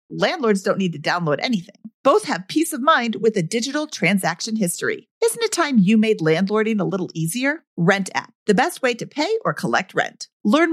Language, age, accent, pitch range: English, 40-59, American, 195-285 Hz